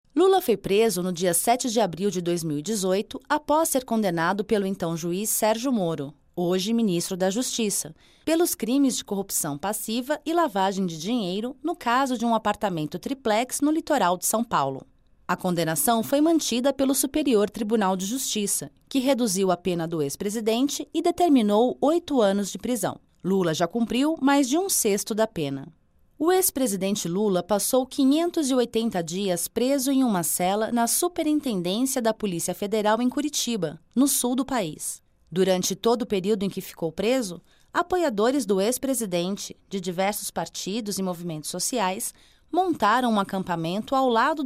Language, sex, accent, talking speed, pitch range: Portuguese, female, Brazilian, 155 wpm, 185-265 Hz